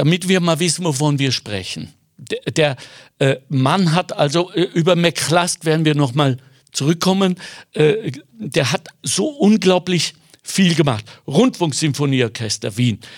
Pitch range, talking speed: 145-190 Hz, 120 wpm